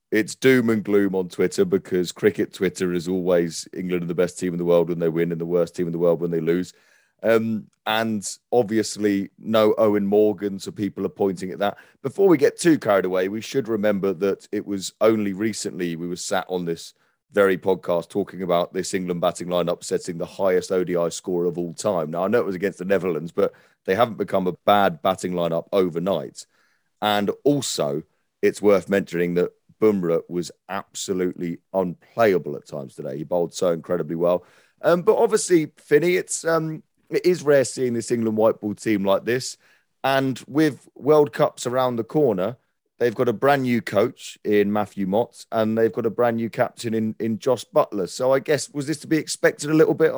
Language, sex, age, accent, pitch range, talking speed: English, male, 30-49, British, 90-125 Hz, 200 wpm